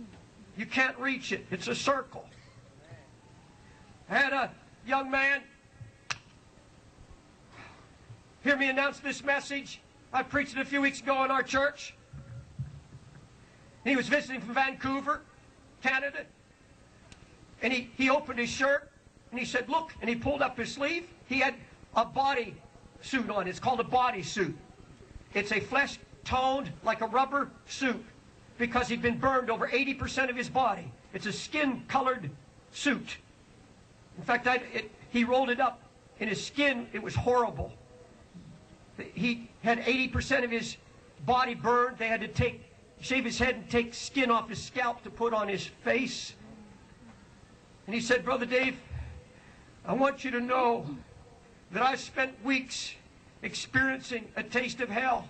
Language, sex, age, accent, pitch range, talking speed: English, male, 50-69, American, 230-265 Hz, 150 wpm